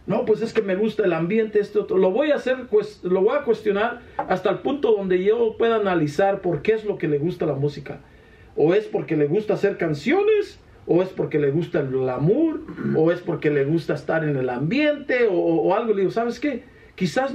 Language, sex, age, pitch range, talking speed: Spanish, male, 50-69, 165-250 Hz, 225 wpm